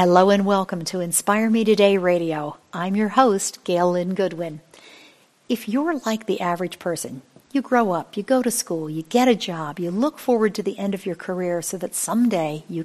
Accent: American